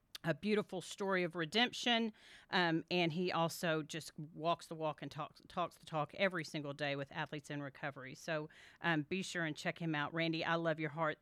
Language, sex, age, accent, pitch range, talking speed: English, female, 40-59, American, 165-210 Hz, 205 wpm